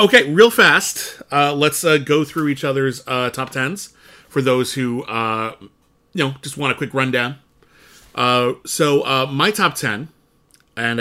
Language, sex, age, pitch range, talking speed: English, male, 30-49, 120-160 Hz, 170 wpm